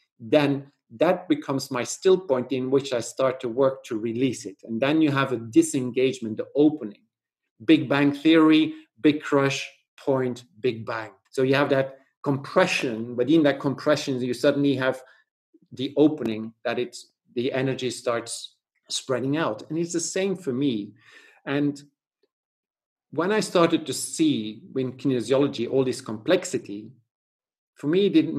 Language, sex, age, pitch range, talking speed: English, male, 50-69, 120-150 Hz, 150 wpm